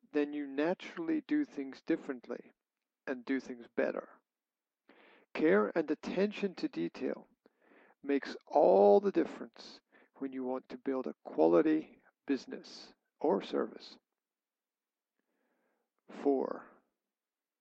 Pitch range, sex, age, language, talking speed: 145-230 Hz, male, 50-69, English, 100 wpm